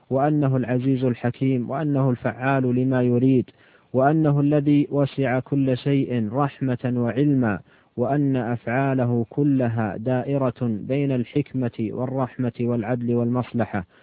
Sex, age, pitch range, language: male, 40-59, 125-140 Hz, Arabic